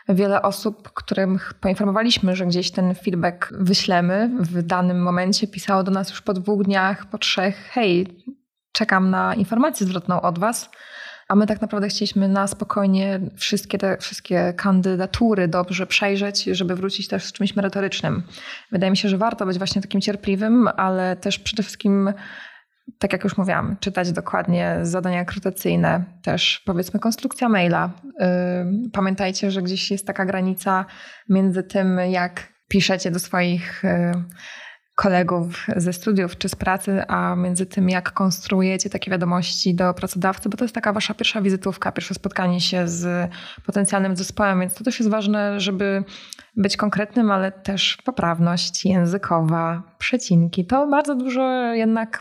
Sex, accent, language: female, native, Polish